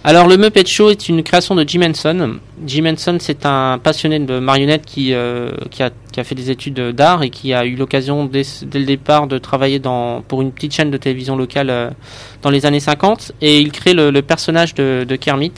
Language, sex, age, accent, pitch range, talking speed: French, male, 20-39, French, 130-155 Hz, 230 wpm